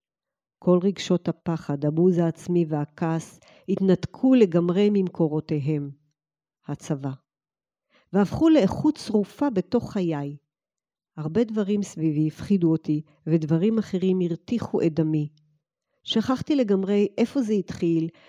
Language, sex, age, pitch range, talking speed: Hebrew, female, 50-69, 160-200 Hz, 100 wpm